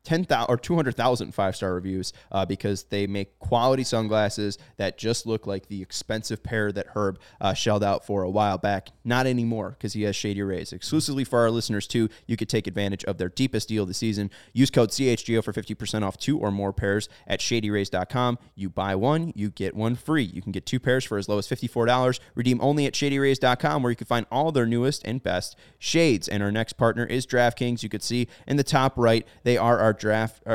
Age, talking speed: 20-39, 210 wpm